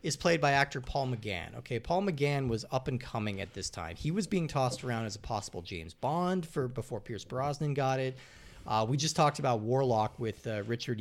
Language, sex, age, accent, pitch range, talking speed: English, male, 30-49, American, 105-145 Hz, 225 wpm